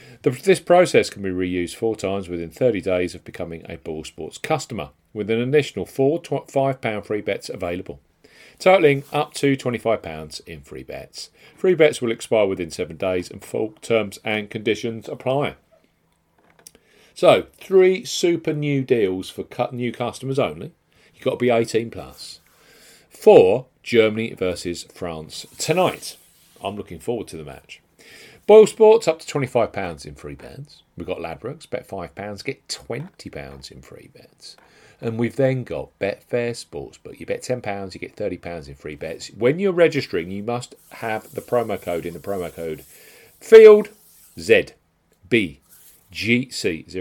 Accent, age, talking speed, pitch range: British, 40-59, 150 wpm, 90-140 Hz